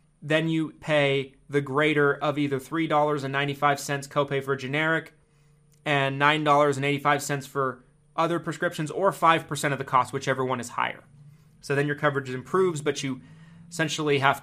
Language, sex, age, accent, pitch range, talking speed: English, male, 30-49, American, 135-155 Hz, 140 wpm